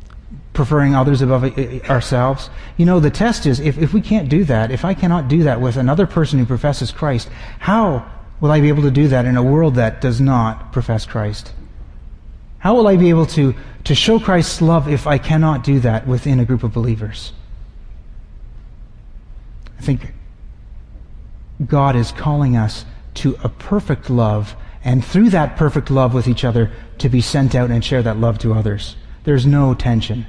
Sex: male